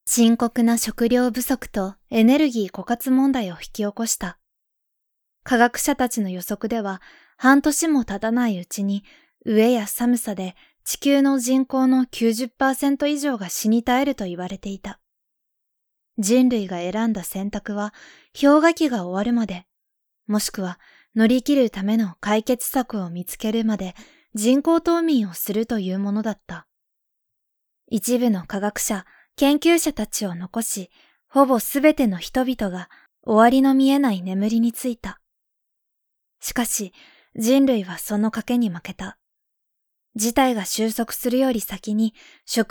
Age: 20-39